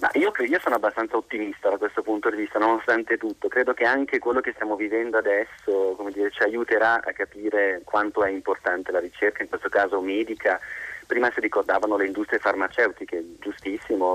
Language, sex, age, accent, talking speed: Italian, male, 30-49, native, 185 wpm